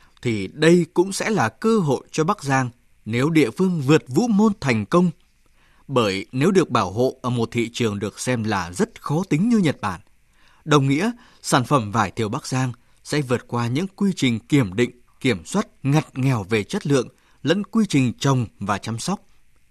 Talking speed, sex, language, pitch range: 200 wpm, male, Vietnamese, 115-170 Hz